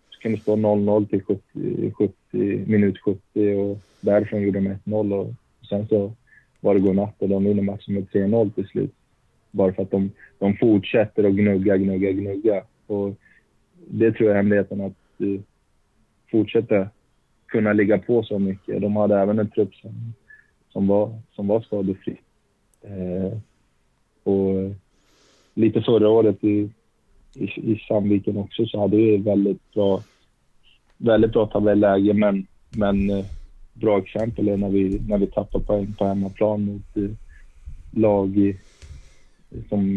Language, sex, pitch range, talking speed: Swedish, male, 95-105 Hz, 145 wpm